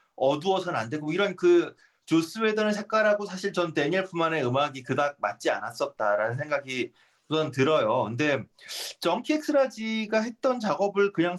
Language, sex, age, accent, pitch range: Korean, male, 30-49, native, 130-185 Hz